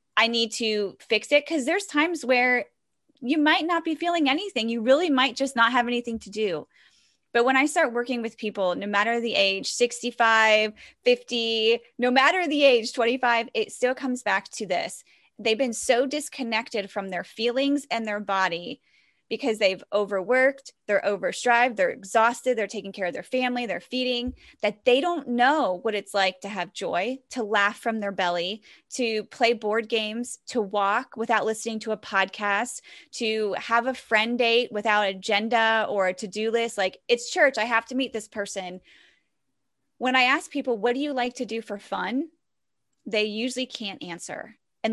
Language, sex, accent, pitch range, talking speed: English, female, American, 210-255 Hz, 180 wpm